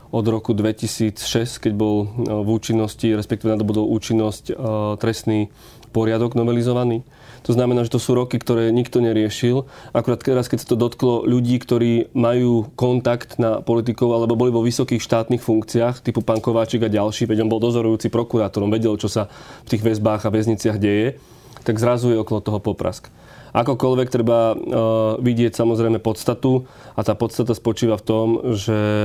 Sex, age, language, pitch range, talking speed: male, 30-49, Slovak, 110-125 Hz, 155 wpm